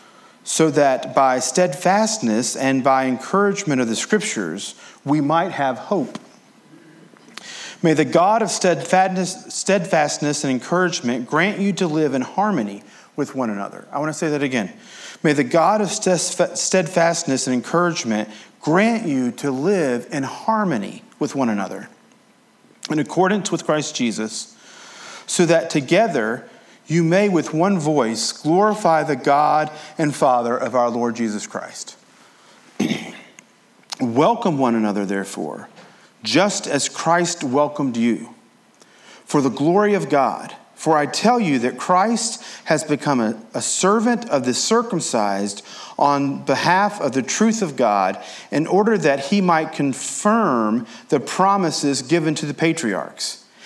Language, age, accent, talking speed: English, 40-59, American, 135 wpm